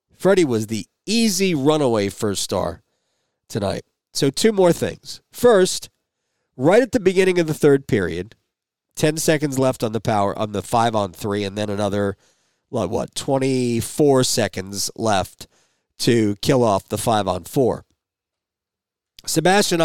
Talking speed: 135 wpm